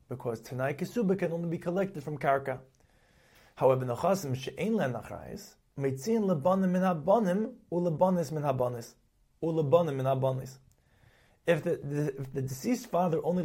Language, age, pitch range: English, 30-49, 130-180 Hz